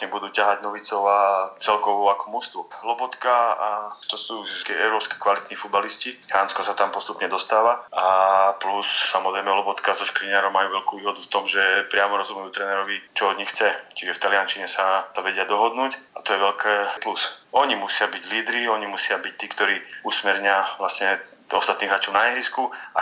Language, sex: Slovak, male